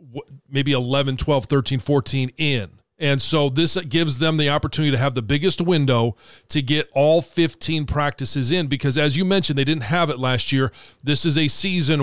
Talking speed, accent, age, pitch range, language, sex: 190 wpm, American, 40-59, 135-155 Hz, English, male